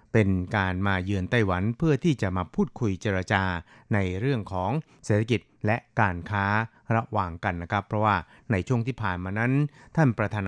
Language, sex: Thai, male